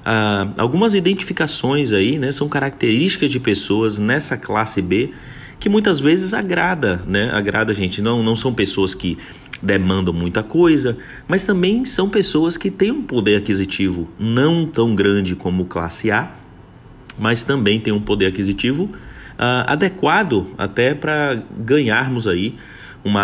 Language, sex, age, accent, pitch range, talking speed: Portuguese, male, 30-49, Brazilian, 100-145 Hz, 140 wpm